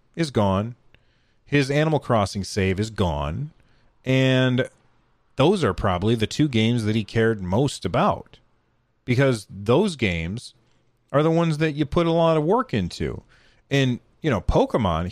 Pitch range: 105-135 Hz